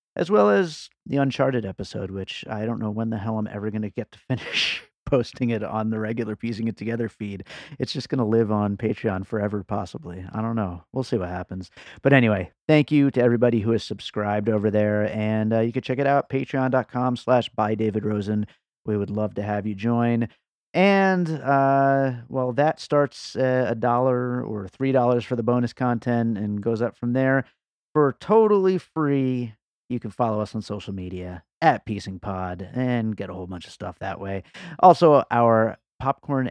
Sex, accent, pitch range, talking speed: male, American, 105-130 Hz, 190 wpm